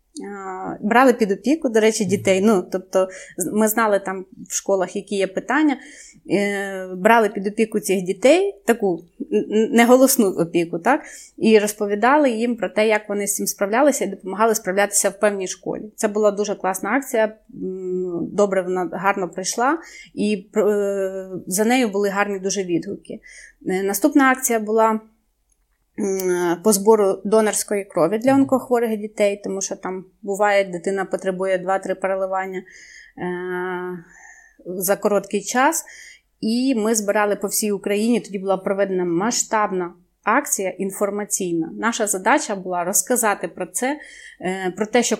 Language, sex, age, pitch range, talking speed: Ukrainian, female, 20-39, 190-225 Hz, 130 wpm